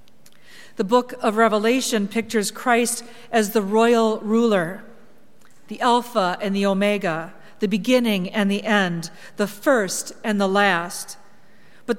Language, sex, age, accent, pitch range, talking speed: English, female, 40-59, American, 195-235 Hz, 130 wpm